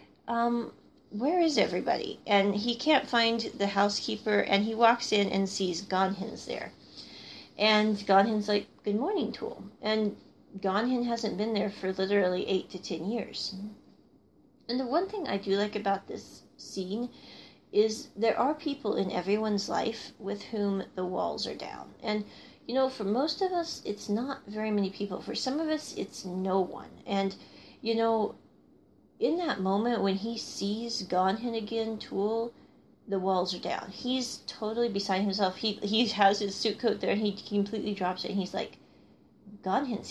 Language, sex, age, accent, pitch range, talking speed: English, female, 40-59, American, 195-230 Hz, 170 wpm